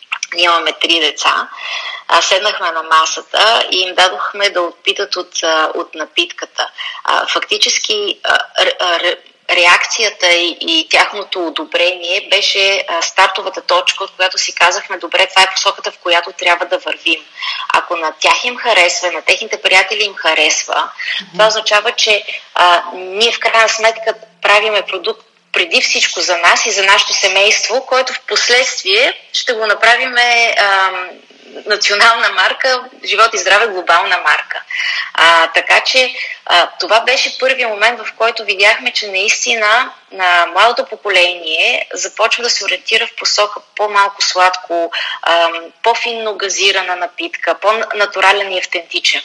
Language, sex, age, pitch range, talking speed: Bulgarian, female, 30-49, 180-230 Hz, 135 wpm